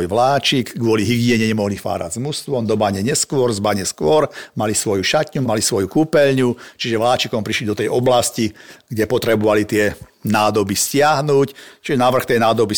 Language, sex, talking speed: Slovak, male, 155 wpm